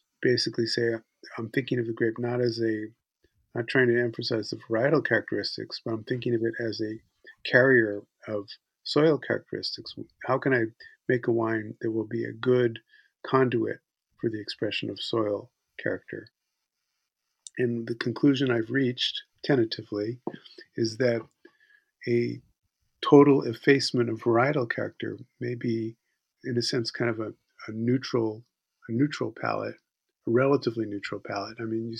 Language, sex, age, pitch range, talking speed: English, male, 50-69, 110-125 Hz, 150 wpm